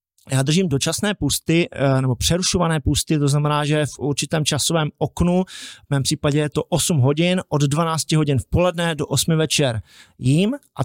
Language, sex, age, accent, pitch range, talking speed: Czech, male, 30-49, native, 140-180 Hz, 170 wpm